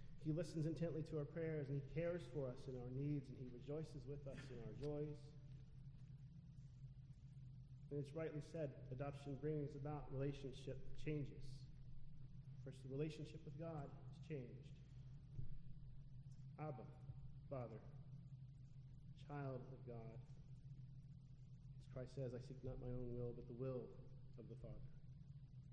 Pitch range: 130-145 Hz